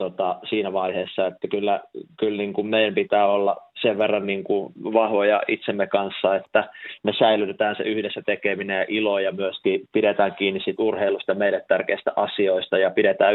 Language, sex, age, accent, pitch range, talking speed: Finnish, male, 30-49, native, 95-105 Hz, 160 wpm